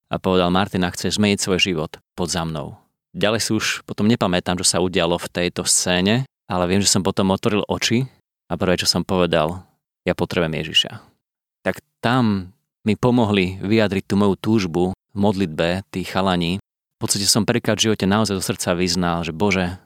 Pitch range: 90-105 Hz